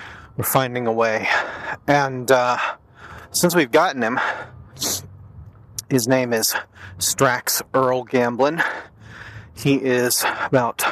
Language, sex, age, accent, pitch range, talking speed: English, male, 30-49, American, 110-145 Hz, 105 wpm